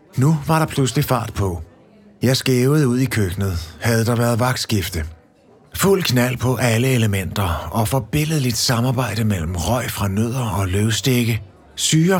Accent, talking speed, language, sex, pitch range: native, 150 wpm, Danish, male, 105-140 Hz